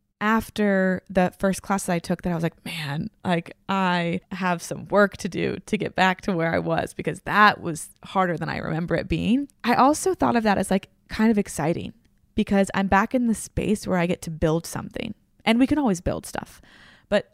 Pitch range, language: 175-205 Hz, English